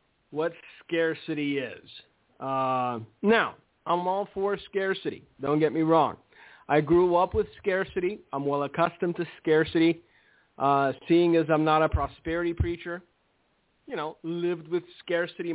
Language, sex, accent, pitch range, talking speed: English, male, American, 160-195 Hz, 140 wpm